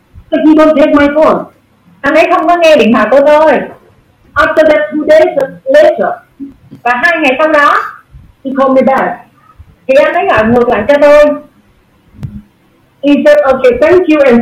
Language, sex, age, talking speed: Vietnamese, female, 30-49, 160 wpm